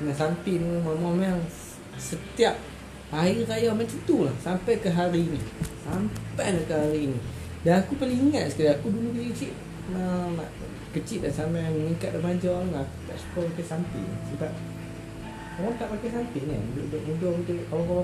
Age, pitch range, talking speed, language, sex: 20-39, 120-175 Hz, 155 wpm, Malay, male